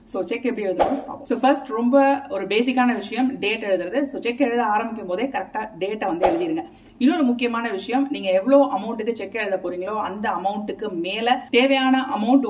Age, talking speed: 30-49, 135 wpm